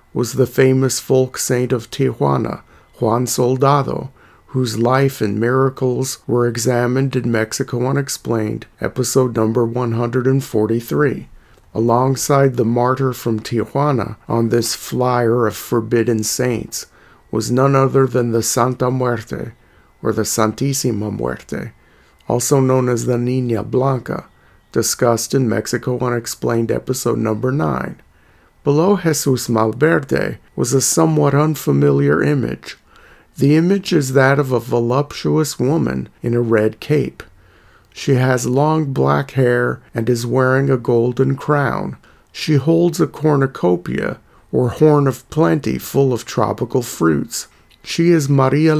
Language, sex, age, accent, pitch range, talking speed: English, male, 50-69, American, 115-135 Hz, 125 wpm